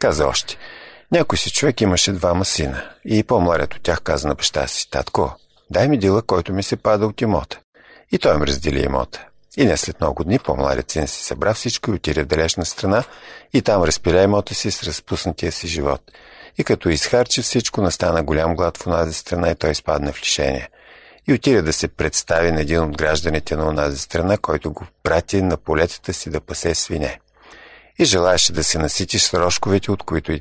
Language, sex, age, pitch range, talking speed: Bulgarian, male, 50-69, 80-100 Hz, 200 wpm